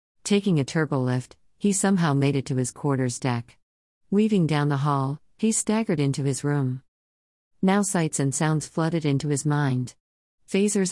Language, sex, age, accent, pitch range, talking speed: English, female, 50-69, American, 130-160 Hz, 165 wpm